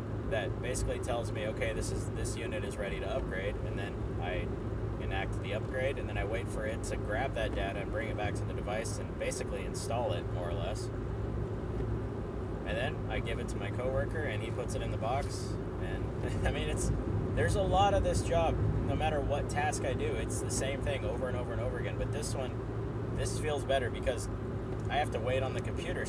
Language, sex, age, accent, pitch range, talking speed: English, male, 30-49, American, 100-120 Hz, 225 wpm